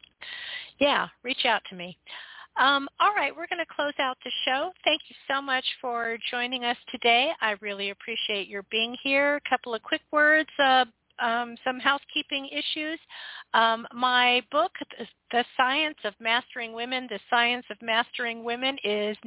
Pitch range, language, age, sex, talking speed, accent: 225-270 Hz, English, 50-69, female, 165 wpm, American